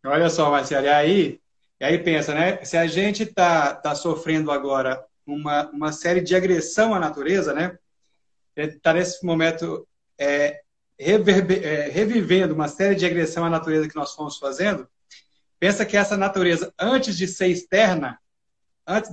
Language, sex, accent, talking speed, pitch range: Portuguese, male, Brazilian, 155 wpm, 165-215 Hz